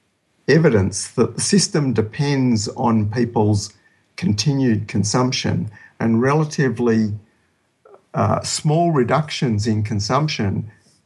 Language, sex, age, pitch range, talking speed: English, male, 50-69, 105-130 Hz, 85 wpm